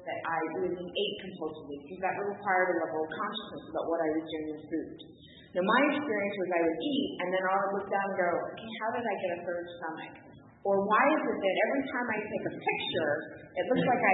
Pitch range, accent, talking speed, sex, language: 170-225 Hz, American, 240 wpm, female, English